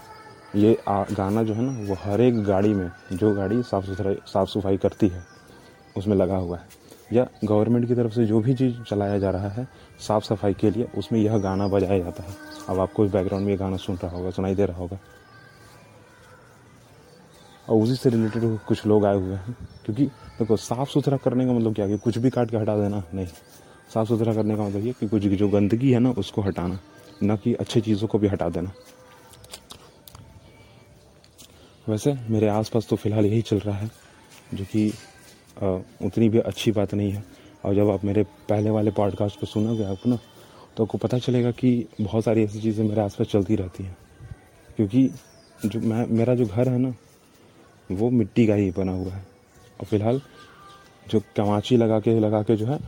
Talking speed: 200 wpm